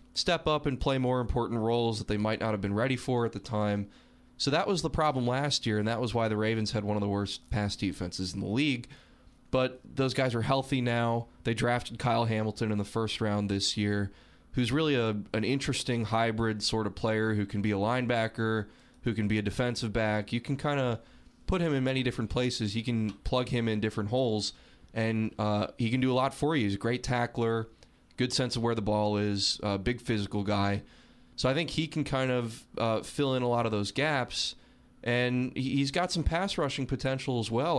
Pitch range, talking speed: 105-130 Hz, 225 wpm